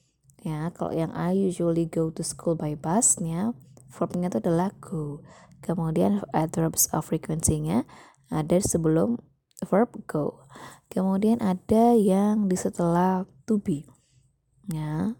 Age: 20-39